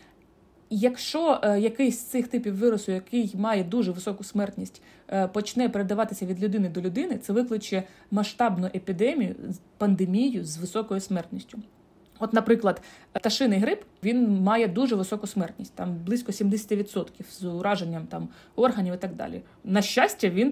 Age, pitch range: 30-49, 190-235 Hz